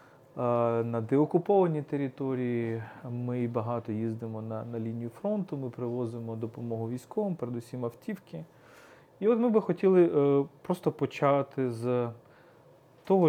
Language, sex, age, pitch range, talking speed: Ukrainian, male, 30-49, 120-165 Hz, 115 wpm